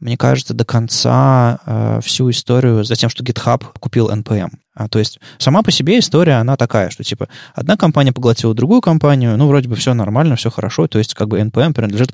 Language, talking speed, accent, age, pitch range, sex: Russian, 210 wpm, native, 20-39, 110-135 Hz, male